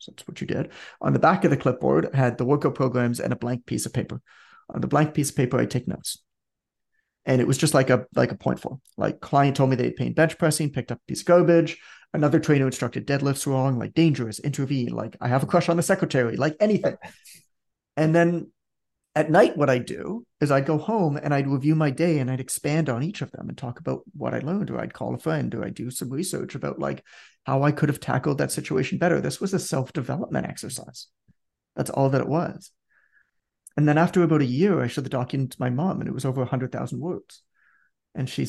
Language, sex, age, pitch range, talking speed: English, male, 30-49, 130-160 Hz, 235 wpm